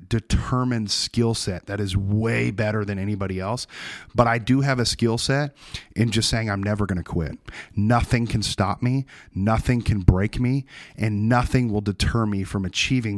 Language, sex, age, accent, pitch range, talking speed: English, male, 30-49, American, 100-125 Hz, 180 wpm